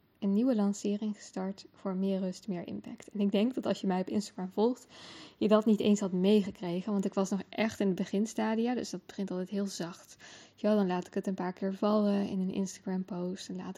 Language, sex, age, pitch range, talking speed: English, female, 10-29, 185-220 Hz, 230 wpm